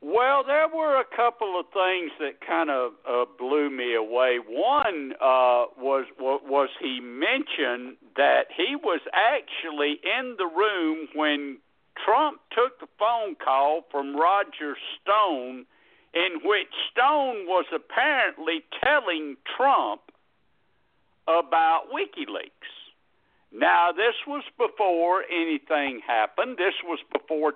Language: English